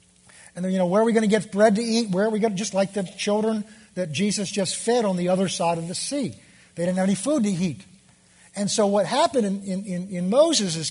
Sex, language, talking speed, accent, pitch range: male, English, 265 wpm, American, 165-210 Hz